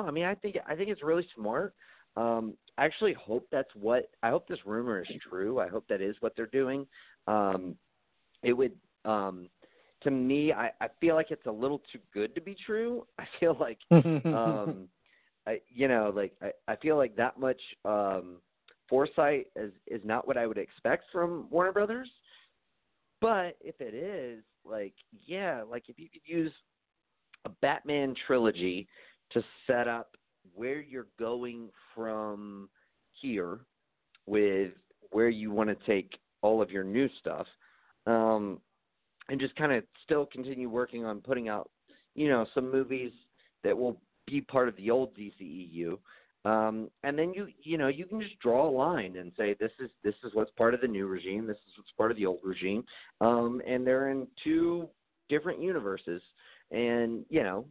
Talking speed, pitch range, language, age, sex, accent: 175 wpm, 105-150 Hz, English, 30-49, male, American